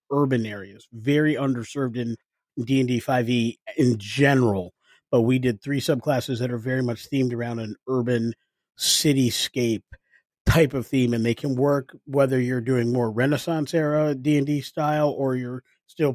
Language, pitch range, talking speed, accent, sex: English, 120-135 Hz, 150 wpm, American, male